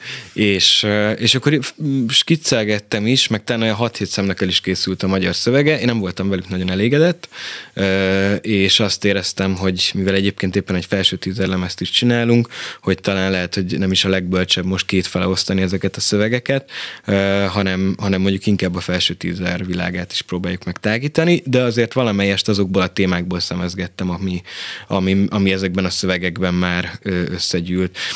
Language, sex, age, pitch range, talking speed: Hungarian, male, 20-39, 90-110 Hz, 160 wpm